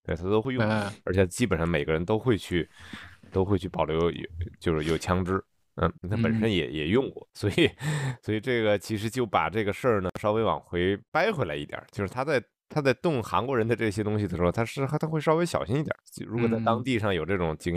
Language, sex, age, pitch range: Chinese, male, 20-39, 95-135 Hz